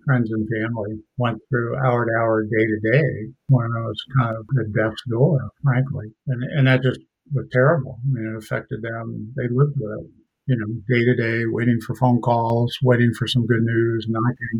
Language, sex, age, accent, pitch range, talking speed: English, male, 50-69, American, 110-125 Hz, 185 wpm